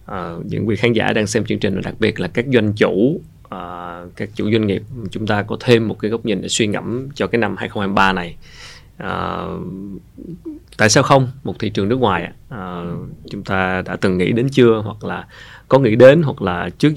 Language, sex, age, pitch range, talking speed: Vietnamese, male, 20-39, 100-115 Hz, 215 wpm